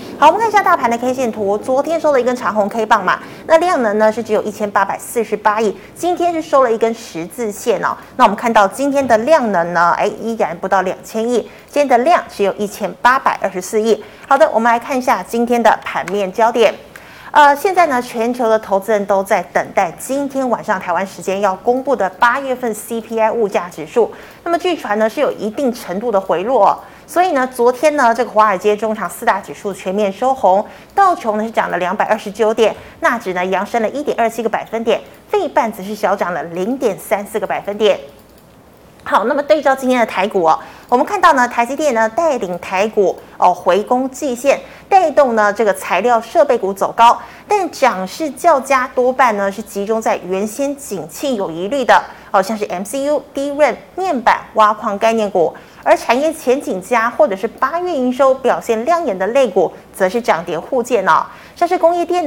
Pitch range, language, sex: 205-275 Hz, Chinese, female